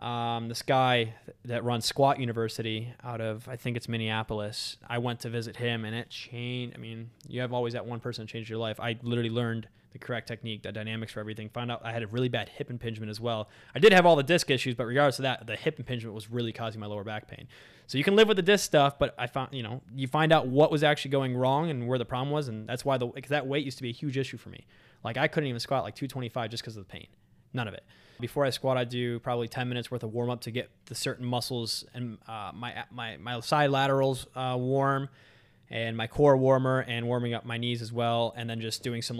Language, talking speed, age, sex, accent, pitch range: English, 265 wpm, 20-39, male, American, 115-135 Hz